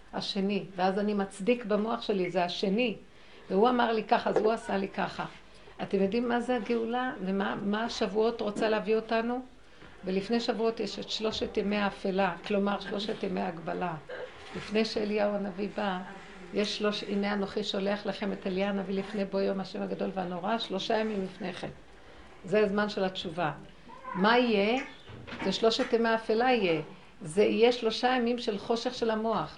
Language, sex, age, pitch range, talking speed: Hebrew, female, 60-79, 195-240 Hz, 160 wpm